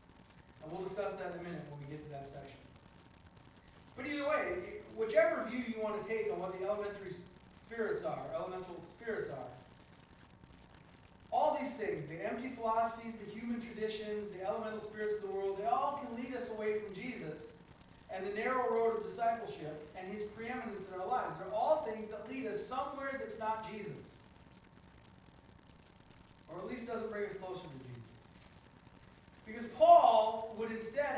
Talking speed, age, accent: 170 wpm, 40-59, American